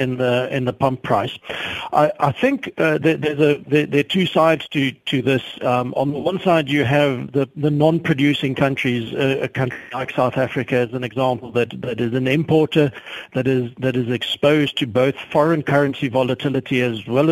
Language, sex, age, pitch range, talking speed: English, male, 60-79, 130-155 Hz, 200 wpm